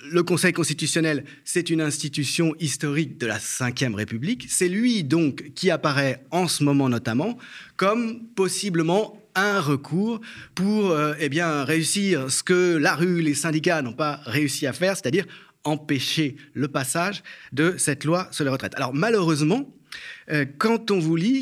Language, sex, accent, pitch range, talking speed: French, male, French, 140-180 Hz, 155 wpm